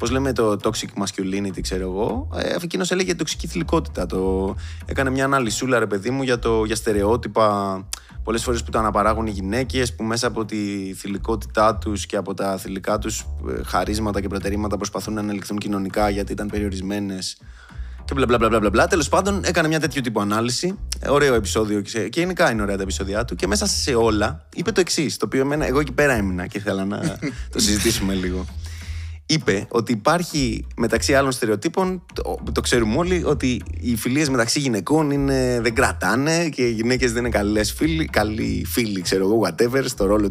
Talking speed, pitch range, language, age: 180 wpm, 95-125 Hz, Greek, 20-39